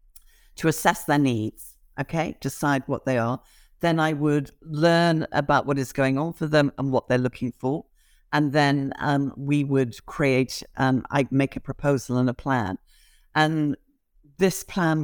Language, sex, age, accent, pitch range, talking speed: English, female, 50-69, British, 135-160 Hz, 170 wpm